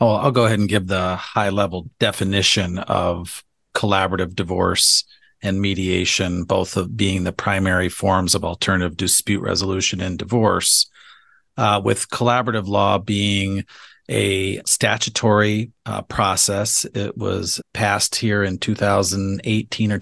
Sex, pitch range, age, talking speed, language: male, 95-110 Hz, 40-59, 125 wpm, English